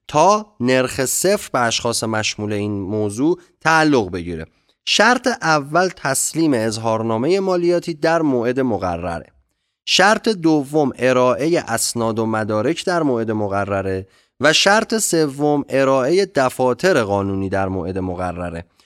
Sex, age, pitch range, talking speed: male, 30-49, 105-150 Hz, 115 wpm